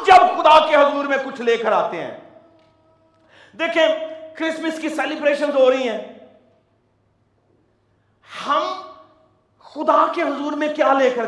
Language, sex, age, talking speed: Urdu, male, 50-69, 135 wpm